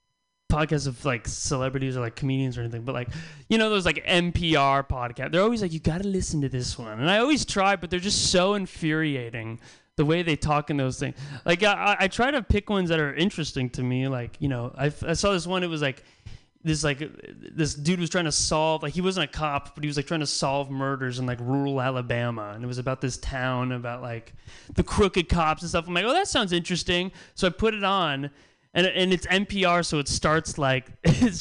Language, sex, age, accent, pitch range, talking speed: English, male, 20-39, American, 130-185 Hz, 235 wpm